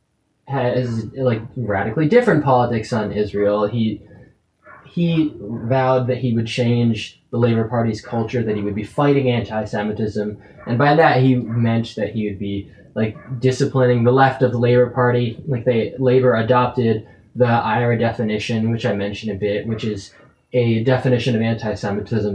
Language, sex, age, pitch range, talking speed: English, male, 20-39, 105-125 Hz, 155 wpm